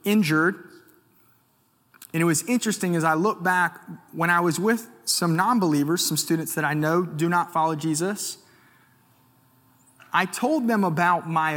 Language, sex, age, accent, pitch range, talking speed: English, male, 30-49, American, 135-180 Hz, 150 wpm